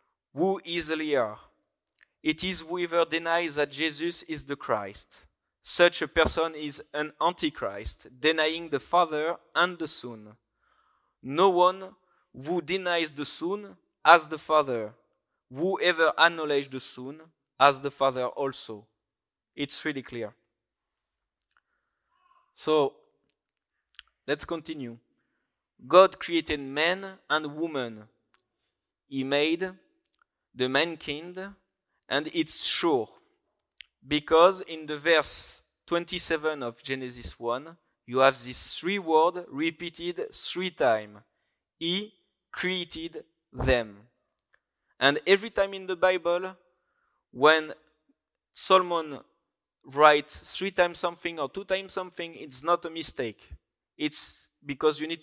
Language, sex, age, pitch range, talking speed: English, male, 20-39, 140-180 Hz, 115 wpm